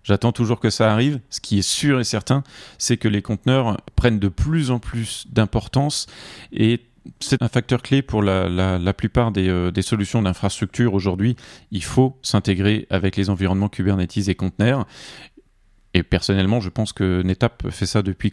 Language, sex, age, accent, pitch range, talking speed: French, male, 40-59, French, 100-125 Hz, 175 wpm